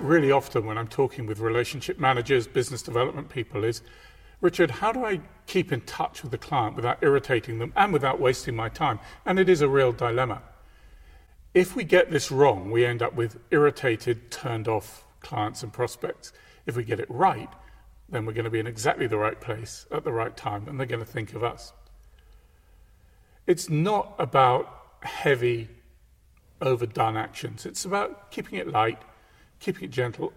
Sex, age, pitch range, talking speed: male, 40-59, 110-145 Hz, 175 wpm